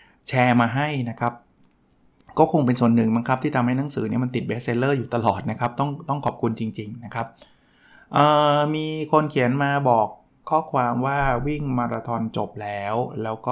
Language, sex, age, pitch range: Thai, male, 20-39, 115-140 Hz